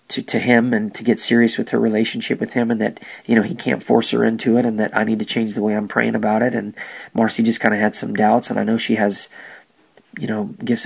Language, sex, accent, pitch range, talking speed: English, male, American, 105-115 Hz, 275 wpm